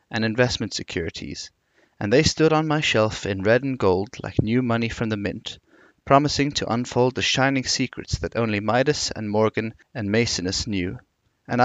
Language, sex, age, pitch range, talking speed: English, male, 30-49, 105-135 Hz, 175 wpm